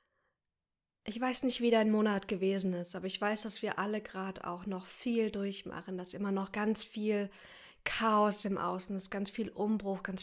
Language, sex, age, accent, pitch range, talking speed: German, female, 20-39, German, 185-220 Hz, 190 wpm